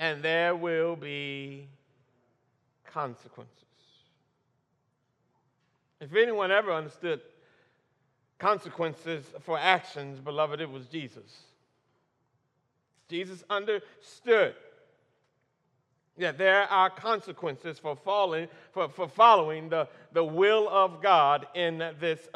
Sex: male